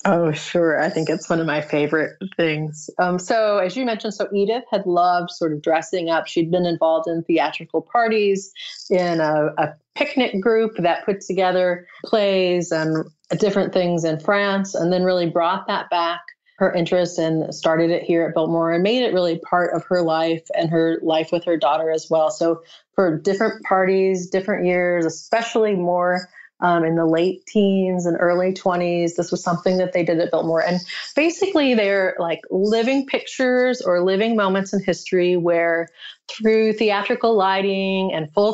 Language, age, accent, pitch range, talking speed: English, 30-49, American, 165-205 Hz, 175 wpm